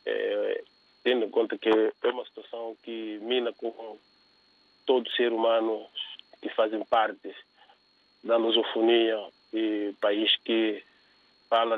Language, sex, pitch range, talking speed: Portuguese, male, 120-165 Hz, 120 wpm